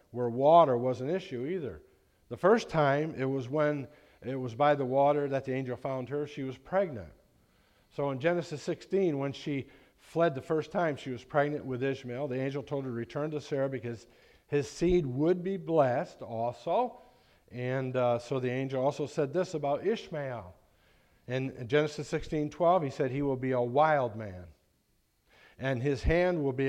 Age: 50-69